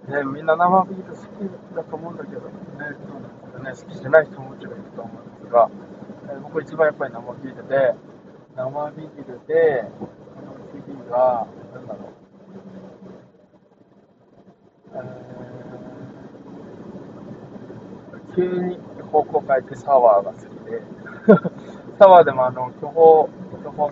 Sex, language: male, Japanese